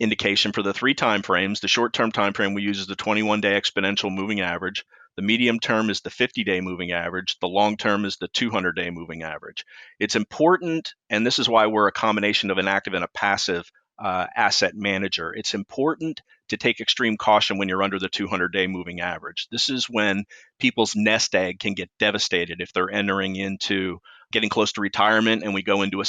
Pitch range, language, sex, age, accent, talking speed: 95-110 Hz, English, male, 40-59, American, 195 wpm